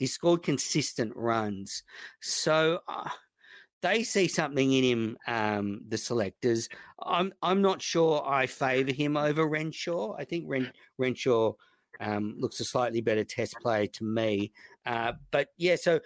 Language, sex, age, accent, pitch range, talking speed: English, male, 50-69, Australian, 110-150 Hz, 150 wpm